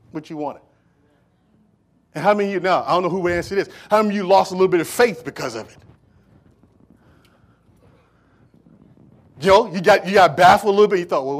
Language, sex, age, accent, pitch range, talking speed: English, male, 40-59, American, 150-215 Hz, 215 wpm